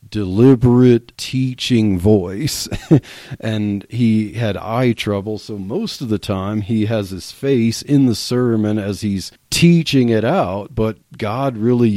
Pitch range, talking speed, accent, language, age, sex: 100-120 Hz, 140 wpm, American, English, 40-59, male